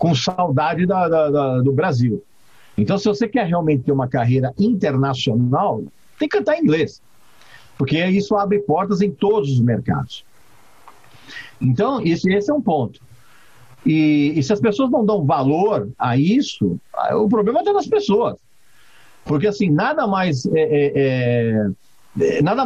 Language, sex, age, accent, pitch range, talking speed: Portuguese, male, 50-69, Brazilian, 130-205 Hz, 135 wpm